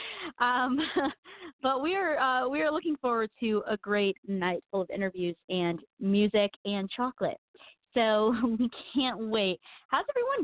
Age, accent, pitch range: 30-49, American, 210-295 Hz